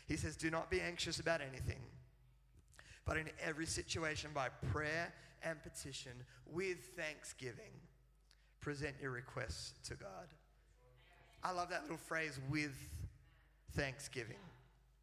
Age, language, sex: 30-49, English, male